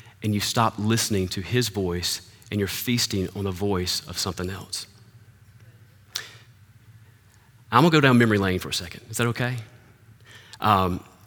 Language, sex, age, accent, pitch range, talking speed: English, male, 30-49, American, 105-140 Hz, 155 wpm